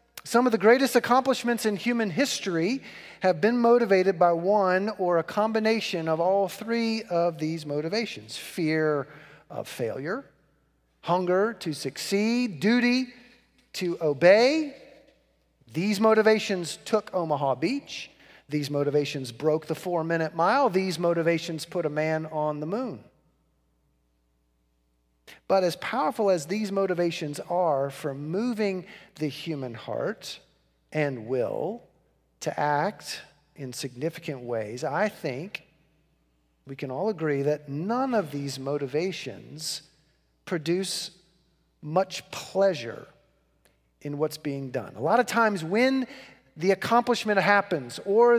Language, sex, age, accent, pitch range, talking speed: English, male, 40-59, American, 145-210 Hz, 120 wpm